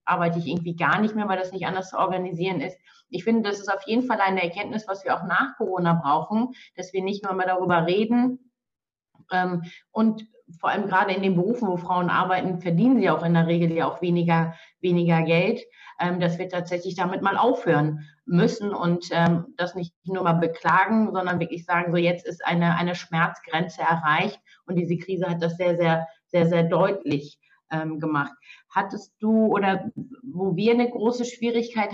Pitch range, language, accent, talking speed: 175-205 Hz, German, German, 185 wpm